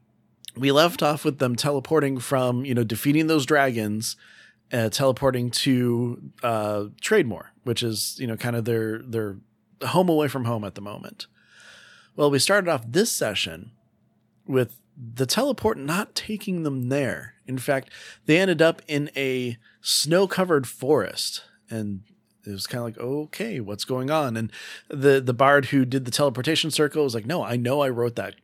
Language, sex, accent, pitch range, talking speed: English, male, American, 120-150 Hz, 170 wpm